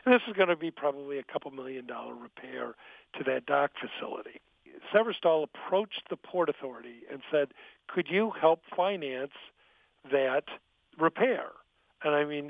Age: 50-69